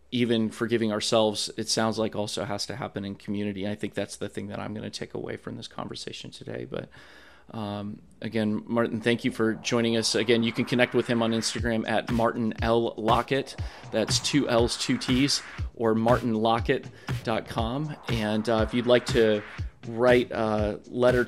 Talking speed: 180 wpm